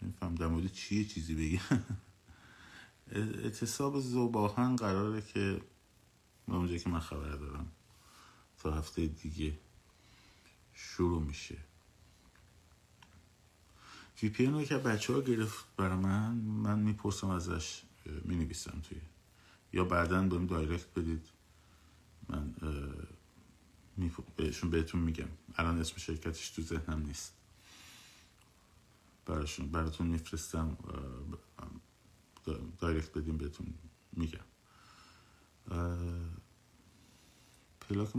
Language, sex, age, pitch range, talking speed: Persian, male, 50-69, 80-100 Hz, 90 wpm